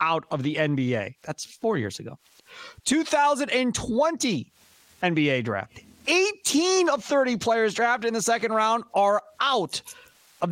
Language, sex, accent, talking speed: English, male, American, 130 wpm